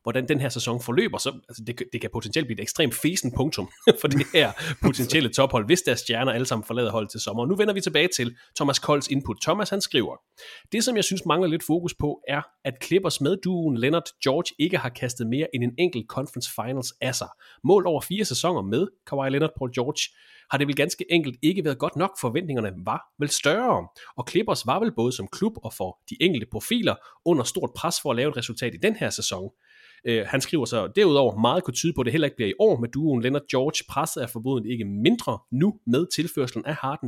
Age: 30-49